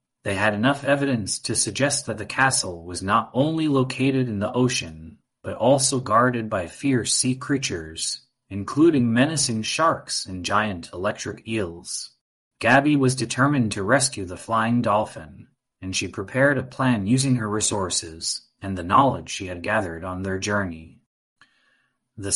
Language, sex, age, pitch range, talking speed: English, male, 30-49, 95-130 Hz, 150 wpm